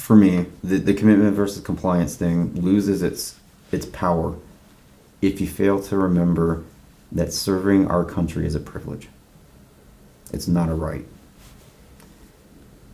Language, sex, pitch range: English, male, 80-95 Hz